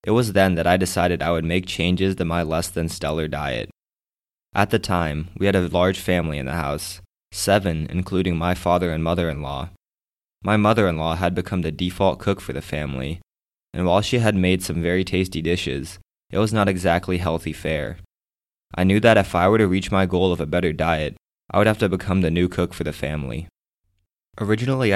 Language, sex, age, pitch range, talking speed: English, male, 20-39, 85-95 Hz, 210 wpm